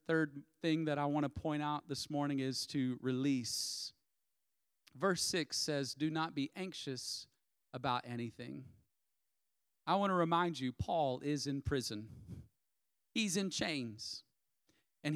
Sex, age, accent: male, 40-59, American